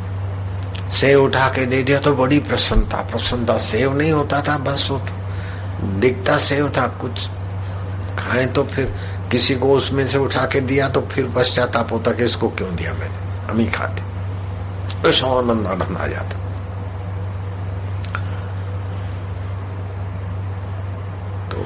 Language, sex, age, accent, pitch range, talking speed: Hindi, male, 60-79, native, 95-115 Hz, 130 wpm